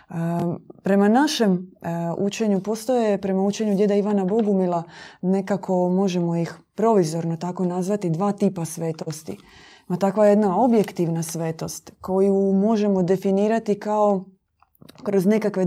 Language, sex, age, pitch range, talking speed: Croatian, female, 20-39, 175-215 Hz, 110 wpm